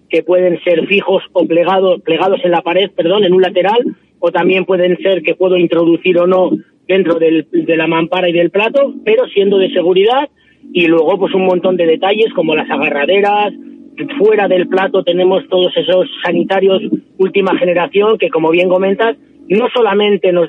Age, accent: 30-49, Spanish